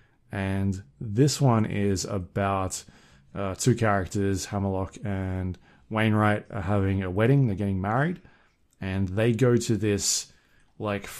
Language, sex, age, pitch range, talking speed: English, male, 20-39, 95-115 Hz, 130 wpm